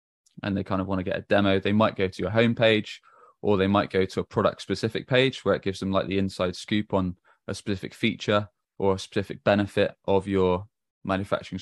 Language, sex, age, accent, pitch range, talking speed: English, male, 20-39, British, 95-105 Hz, 225 wpm